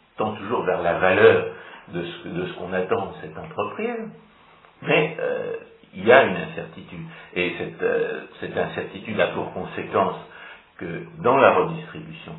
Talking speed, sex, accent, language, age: 145 wpm, male, French, French, 50-69